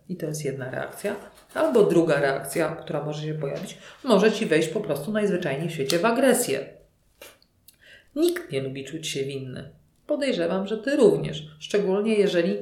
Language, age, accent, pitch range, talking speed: Polish, 40-59, native, 150-200 Hz, 160 wpm